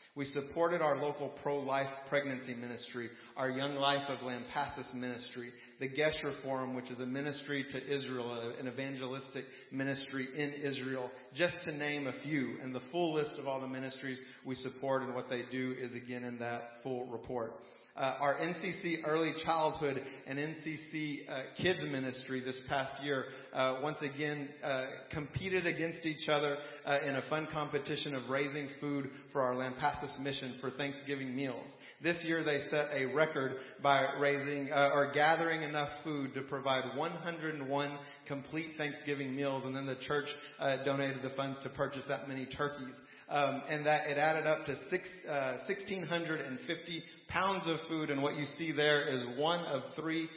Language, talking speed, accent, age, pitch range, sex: English, 170 wpm, American, 40-59, 130-150 Hz, male